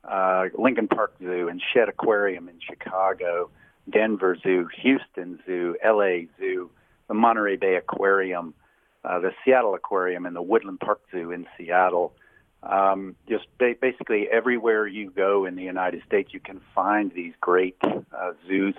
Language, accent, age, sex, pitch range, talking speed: English, American, 50-69, male, 90-100 Hz, 155 wpm